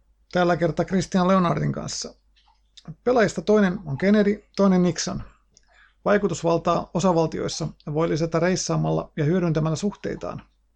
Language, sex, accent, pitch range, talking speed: Finnish, male, native, 160-190 Hz, 105 wpm